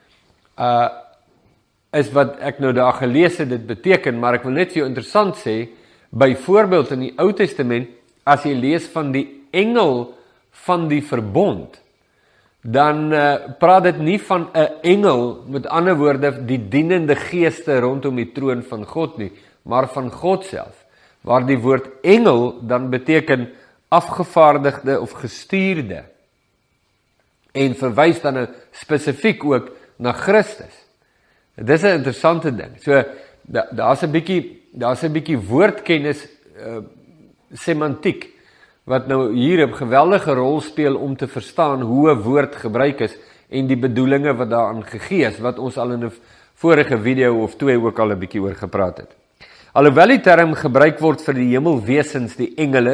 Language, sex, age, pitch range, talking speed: English, male, 50-69, 125-160 Hz, 150 wpm